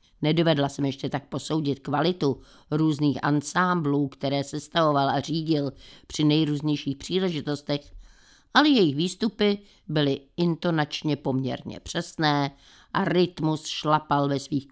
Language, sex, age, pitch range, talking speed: Czech, female, 50-69, 140-170 Hz, 110 wpm